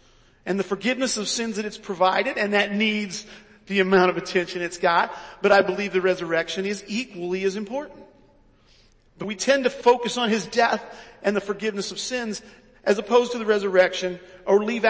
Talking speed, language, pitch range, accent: 185 wpm, English, 185-245 Hz, American